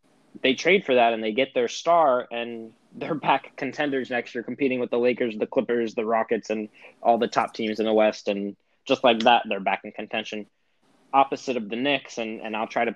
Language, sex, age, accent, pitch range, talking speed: English, male, 20-39, American, 110-120 Hz, 220 wpm